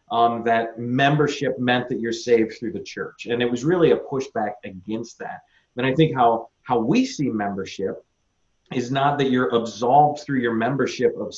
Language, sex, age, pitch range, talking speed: English, male, 30-49, 115-130 Hz, 185 wpm